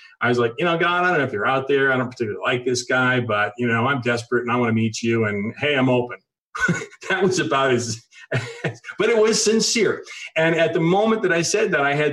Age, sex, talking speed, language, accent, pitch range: 40-59, male, 255 wpm, English, American, 120-165 Hz